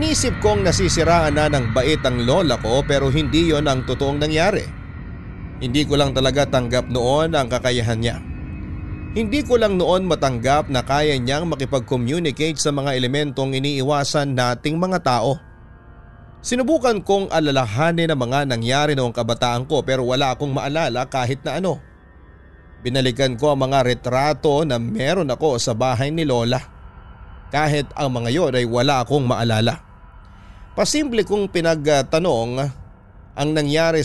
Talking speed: 140 wpm